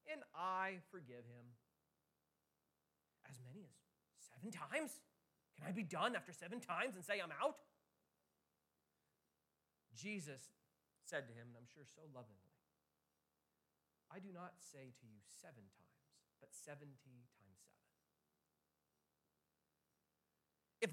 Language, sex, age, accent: English, male, 30-49, American